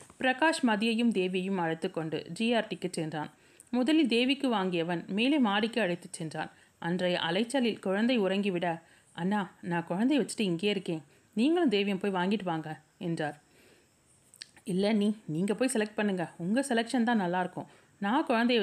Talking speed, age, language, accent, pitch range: 130 wpm, 30-49, Tamil, native, 170-230 Hz